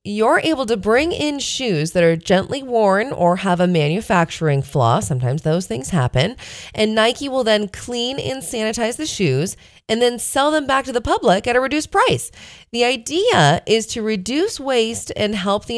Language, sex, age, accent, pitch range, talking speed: English, female, 20-39, American, 150-225 Hz, 185 wpm